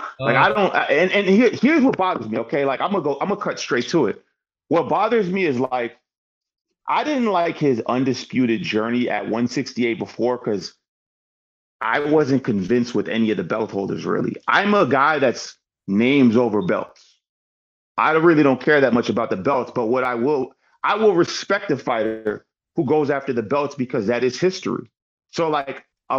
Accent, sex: American, male